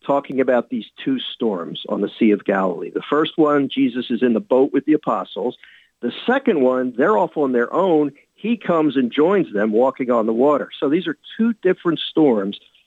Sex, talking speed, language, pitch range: male, 205 wpm, English, 120-165 Hz